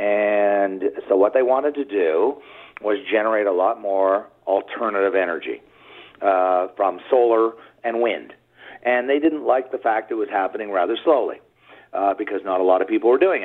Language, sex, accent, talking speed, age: English, male, American, 175 wpm, 50-69